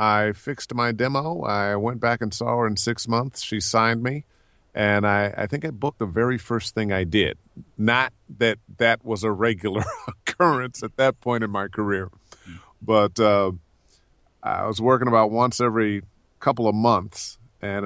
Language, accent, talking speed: English, American, 180 wpm